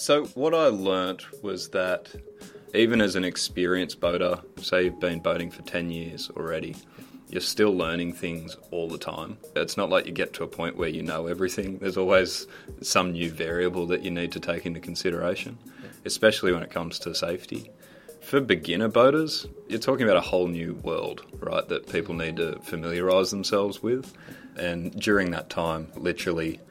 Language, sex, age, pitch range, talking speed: English, male, 30-49, 85-95 Hz, 180 wpm